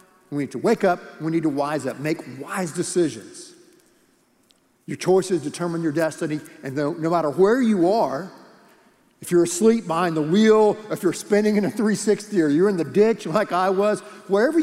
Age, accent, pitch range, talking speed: 50-69, American, 165-225 Hz, 190 wpm